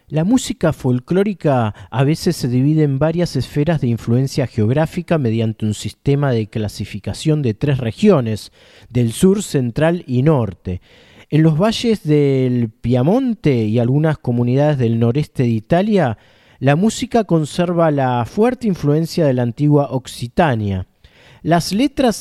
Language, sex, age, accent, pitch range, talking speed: Spanish, male, 40-59, Argentinian, 120-175 Hz, 135 wpm